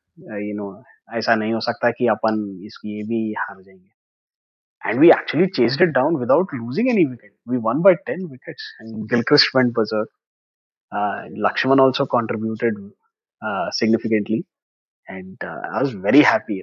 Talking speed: 155 wpm